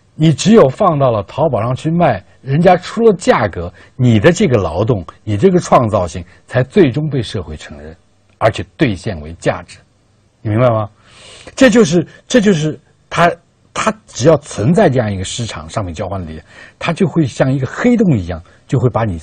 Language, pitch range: Chinese, 95-145 Hz